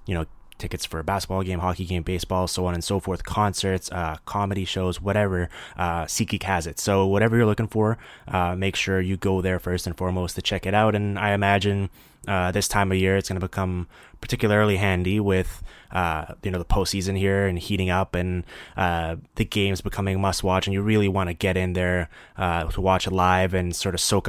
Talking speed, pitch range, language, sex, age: 220 wpm, 90-100 Hz, English, male, 20-39